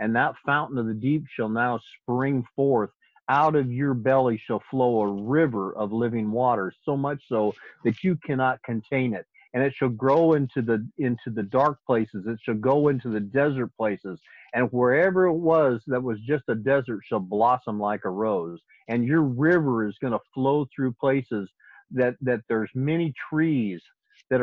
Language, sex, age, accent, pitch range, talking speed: English, male, 50-69, American, 110-145 Hz, 185 wpm